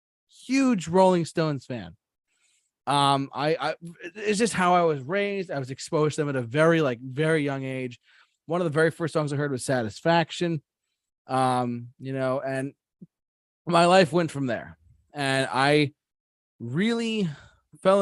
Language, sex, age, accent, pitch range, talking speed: English, male, 20-39, American, 130-170 Hz, 160 wpm